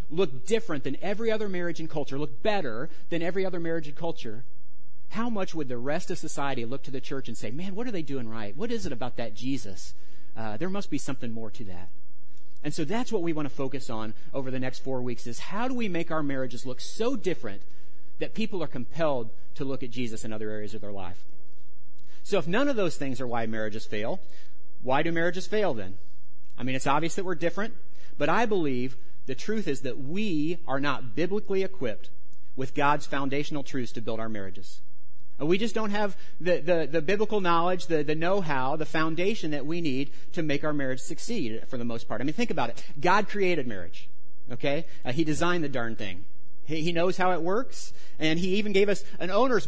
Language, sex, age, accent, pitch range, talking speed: English, male, 40-59, American, 115-175 Hz, 220 wpm